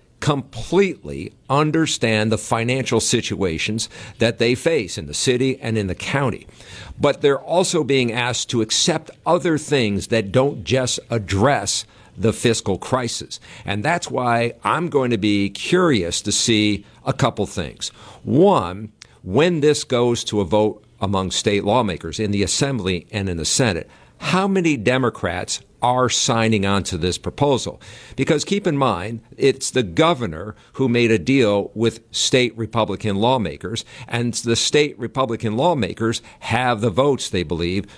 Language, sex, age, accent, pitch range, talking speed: English, male, 50-69, American, 105-130 Hz, 150 wpm